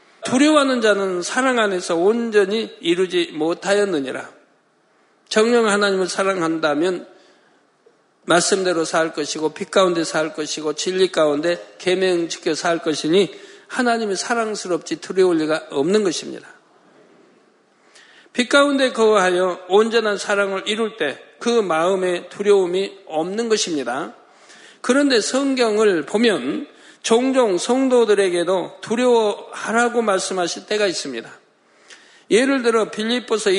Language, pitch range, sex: Korean, 185-235 Hz, male